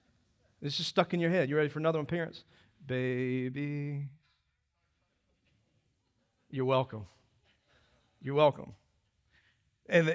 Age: 40-59